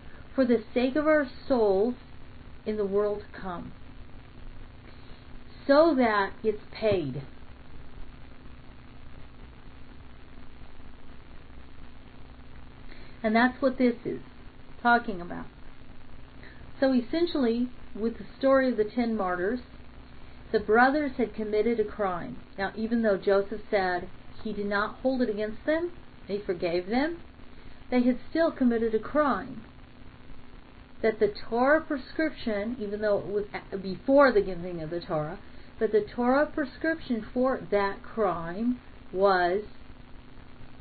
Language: English